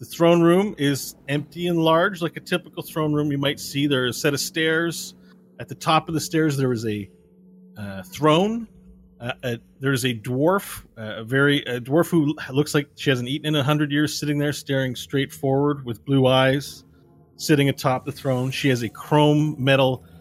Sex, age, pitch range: male, 30-49, 115-150 Hz